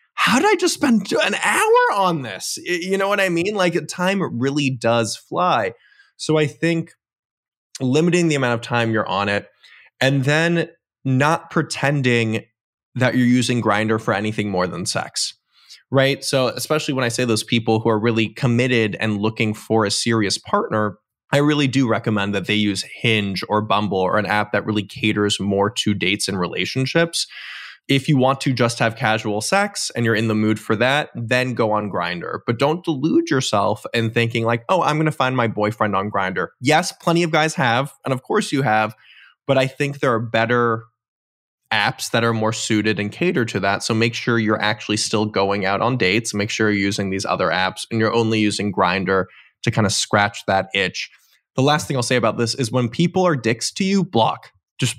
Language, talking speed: English, 205 wpm